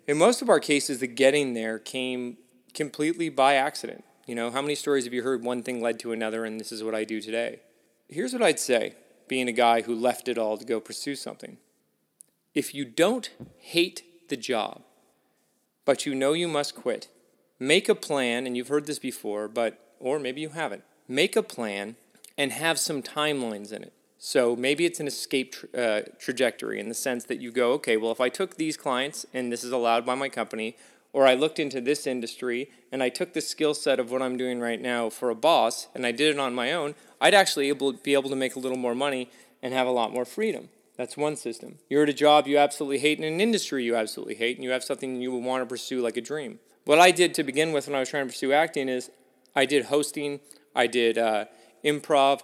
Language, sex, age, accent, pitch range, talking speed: English, male, 30-49, American, 120-145 Hz, 230 wpm